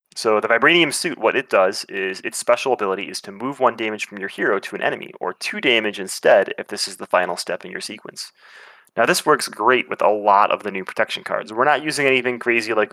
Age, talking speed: 20-39, 245 wpm